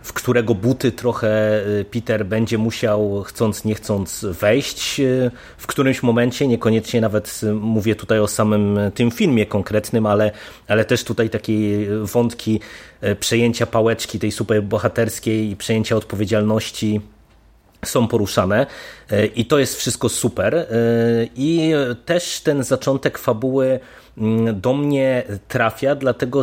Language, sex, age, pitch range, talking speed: Polish, male, 30-49, 105-120 Hz, 120 wpm